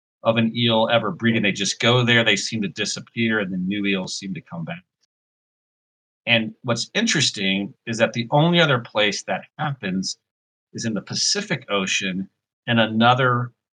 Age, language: 40-59, English